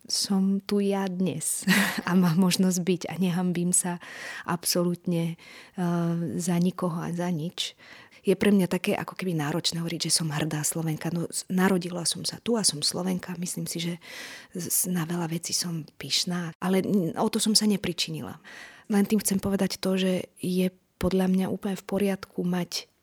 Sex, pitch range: female, 170-195 Hz